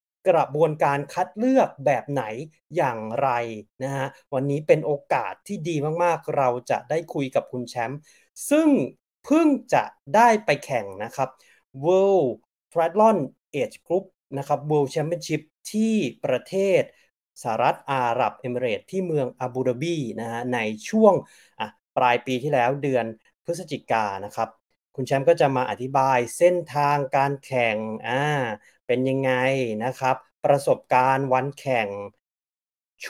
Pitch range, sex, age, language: 125-170 Hz, male, 30-49, Thai